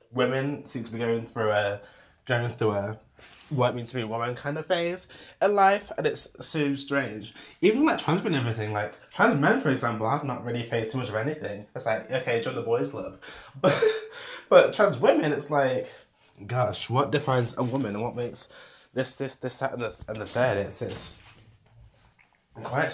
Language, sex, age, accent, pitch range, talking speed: English, male, 20-39, British, 115-150 Hz, 205 wpm